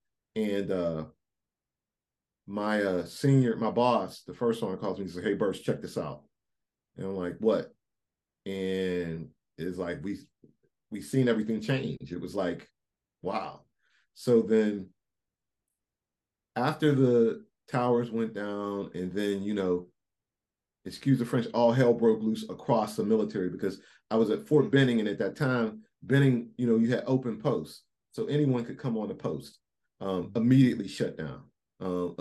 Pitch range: 100-130 Hz